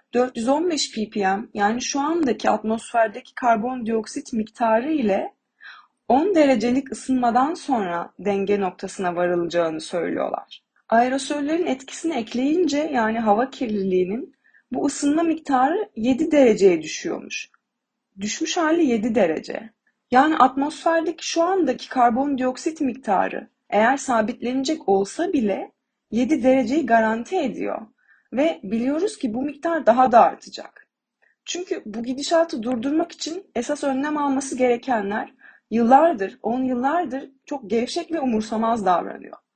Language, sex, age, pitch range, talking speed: Turkish, female, 30-49, 230-305 Hz, 110 wpm